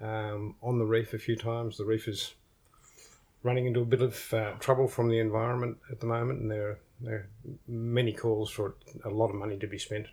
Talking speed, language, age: 230 wpm, English, 50-69